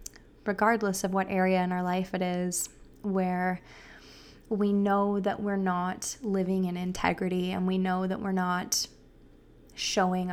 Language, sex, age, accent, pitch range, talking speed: English, female, 20-39, American, 185-200 Hz, 145 wpm